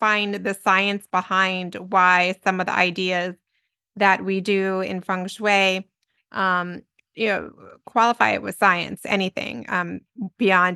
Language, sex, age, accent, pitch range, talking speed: English, female, 30-49, American, 185-210 Hz, 140 wpm